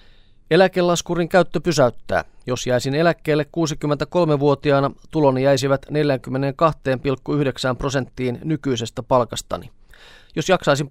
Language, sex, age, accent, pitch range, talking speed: Finnish, male, 30-49, native, 125-150 Hz, 85 wpm